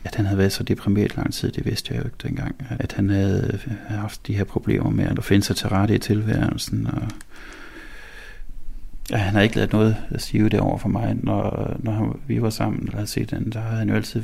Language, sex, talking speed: Danish, male, 230 wpm